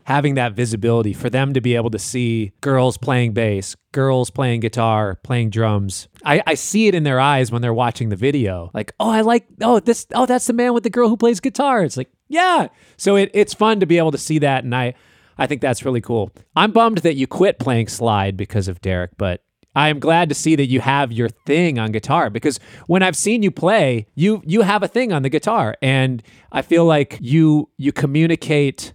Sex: male